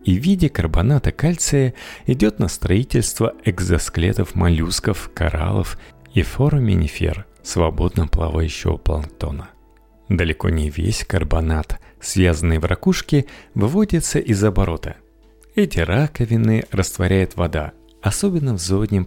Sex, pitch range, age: male, 85-110 Hz, 40-59